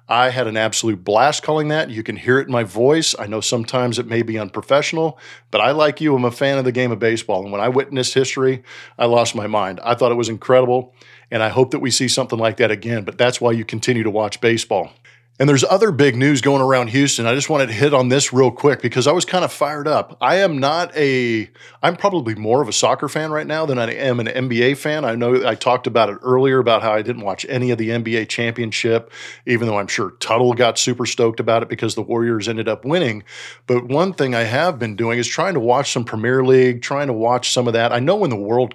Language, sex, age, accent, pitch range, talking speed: English, male, 40-59, American, 115-140 Hz, 255 wpm